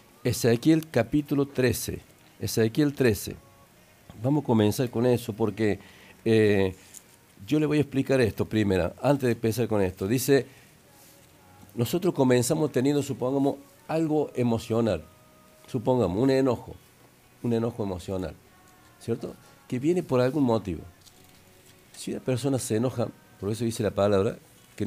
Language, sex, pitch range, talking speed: Spanish, male, 95-130 Hz, 135 wpm